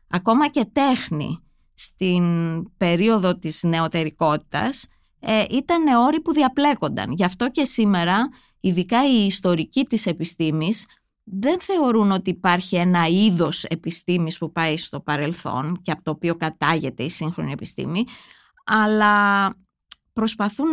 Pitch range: 170-235 Hz